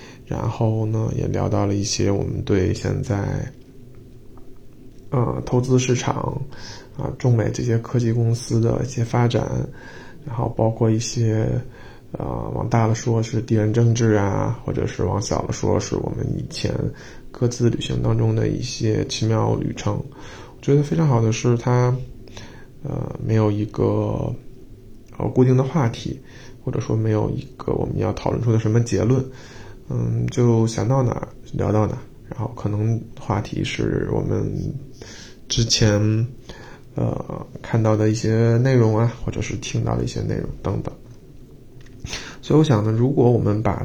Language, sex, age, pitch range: Chinese, male, 20-39, 110-130 Hz